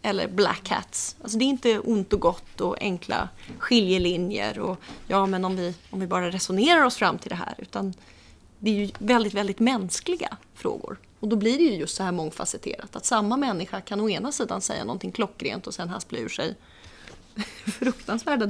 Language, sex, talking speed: Swedish, female, 195 wpm